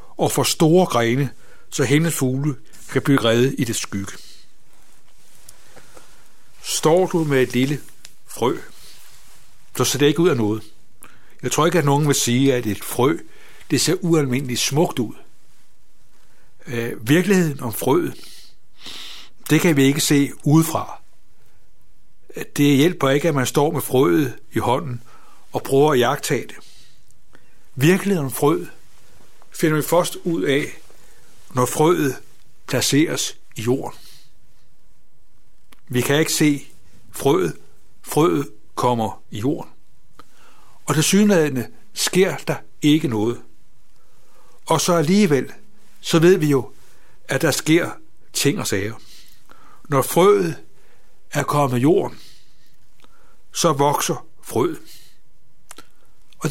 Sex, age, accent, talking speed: male, 60-79, native, 125 wpm